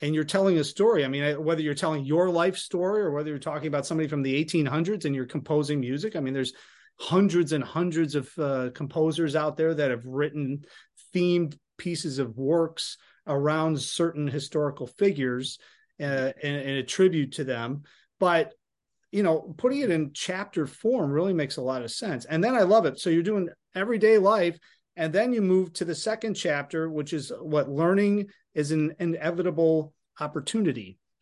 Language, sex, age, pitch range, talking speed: English, male, 30-49, 145-180 Hz, 185 wpm